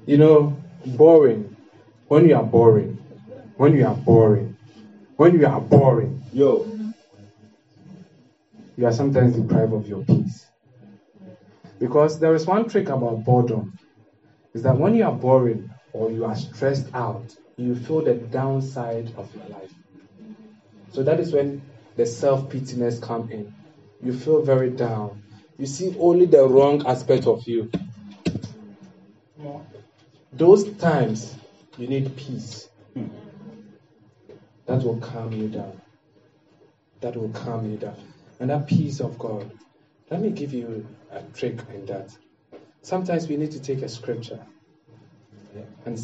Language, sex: English, male